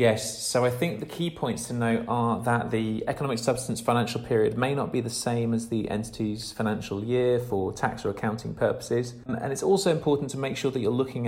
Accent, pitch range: British, 95-125 Hz